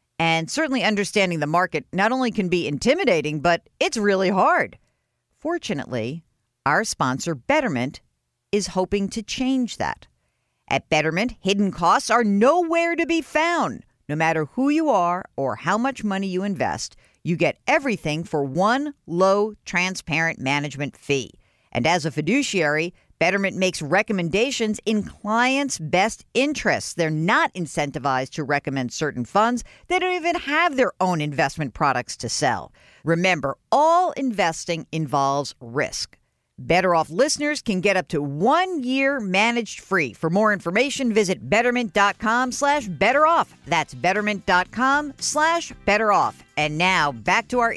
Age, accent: 50-69, American